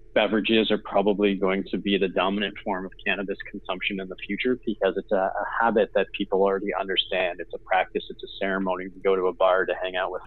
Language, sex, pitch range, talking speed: English, male, 90-110 Hz, 230 wpm